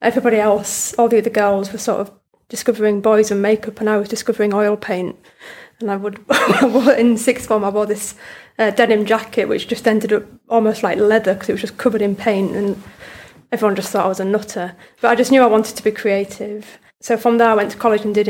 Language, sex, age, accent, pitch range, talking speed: English, female, 30-49, British, 205-225 Hz, 235 wpm